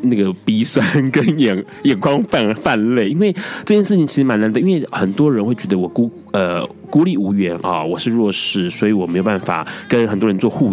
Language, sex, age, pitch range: Chinese, male, 30-49, 95-145 Hz